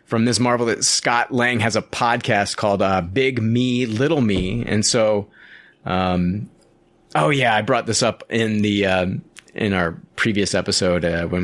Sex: male